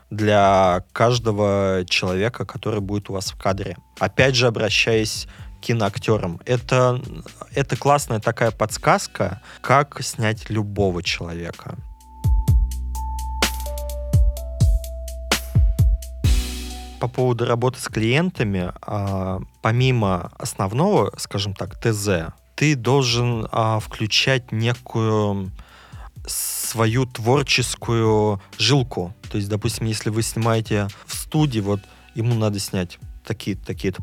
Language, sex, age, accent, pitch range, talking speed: Russian, male, 20-39, native, 100-125 Hz, 95 wpm